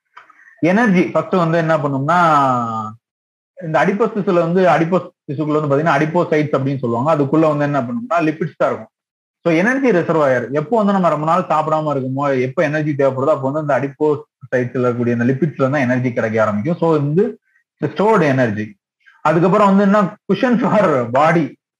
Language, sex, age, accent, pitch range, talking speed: Tamil, male, 30-49, native, 140-180 Hz, 115 wpm